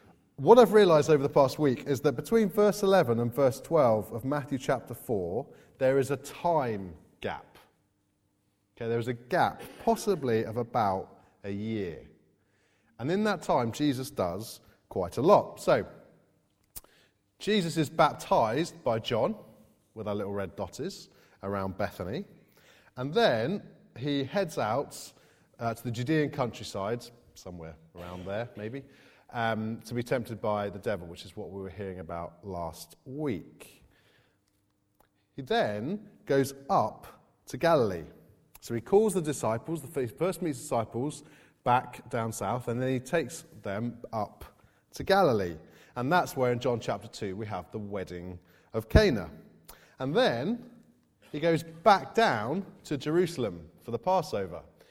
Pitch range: 100-150 Hz